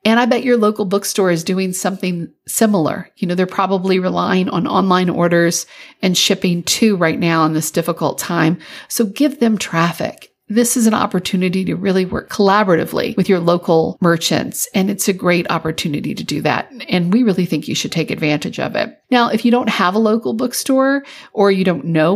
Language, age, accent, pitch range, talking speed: English, 50-69, American, 175-225 Hz, 200 wpm